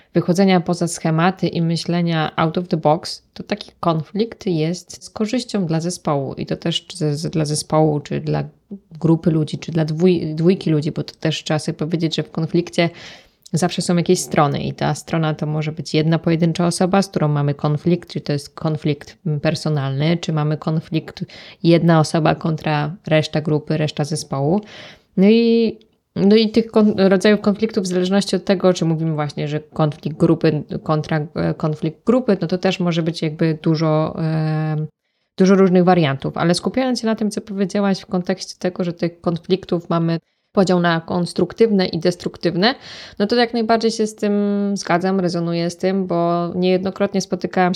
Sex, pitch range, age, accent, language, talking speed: female, 160-195 Hz, 20-39, native, Polish, 165 wpm